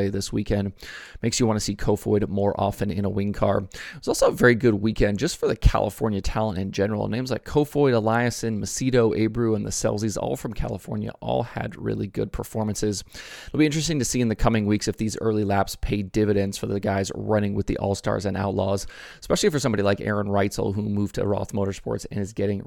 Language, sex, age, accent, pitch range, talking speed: English, male, 30-49, American, 100-115 Hz, 220 wpm